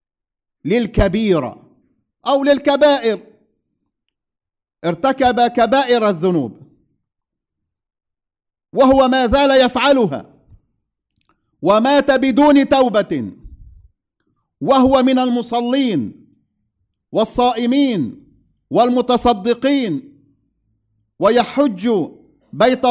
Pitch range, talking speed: 170-260 Hz, 50 wpm